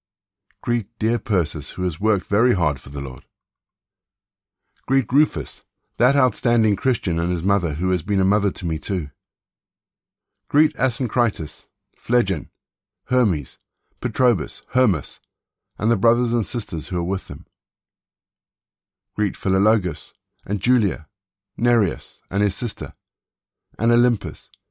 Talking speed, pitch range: 125 wpm, 95-115 Hz